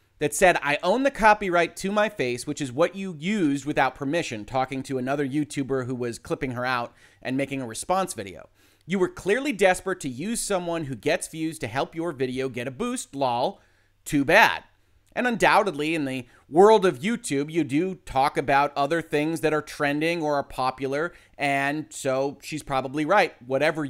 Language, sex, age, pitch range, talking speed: English, male, 30-49, 130-170 Hz, 190 wpm